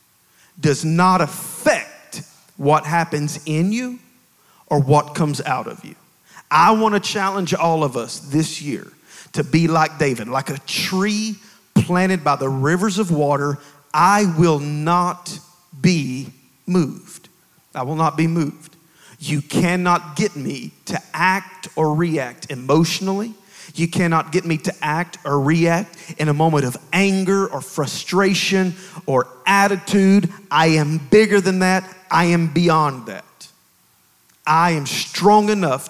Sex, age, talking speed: male, 40-59, 140 wpm